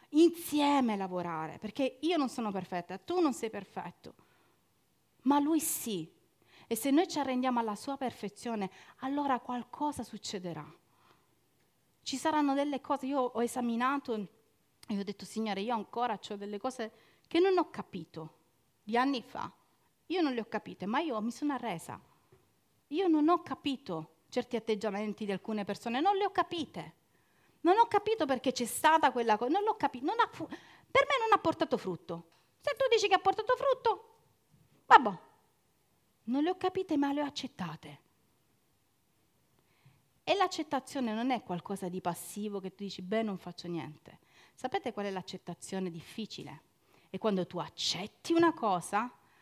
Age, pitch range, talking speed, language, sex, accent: 40-59, 190-295 Hz, 160 wpm, Italian, female, native